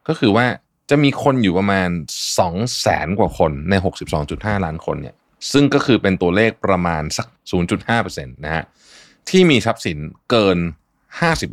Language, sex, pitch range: Thai, male, 85-115 Hz